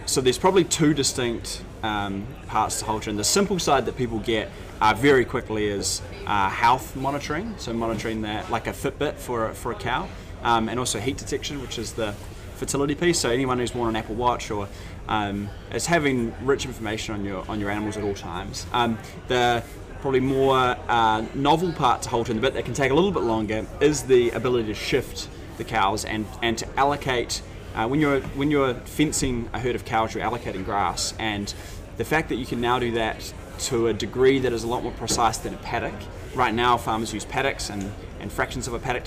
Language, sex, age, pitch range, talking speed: English, male, 20-39, 100-125 Hz, 210 wpm